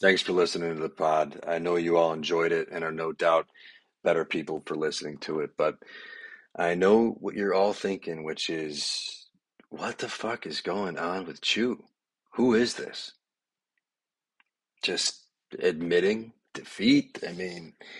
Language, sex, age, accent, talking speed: English, male, 40-59, American, 155 wpm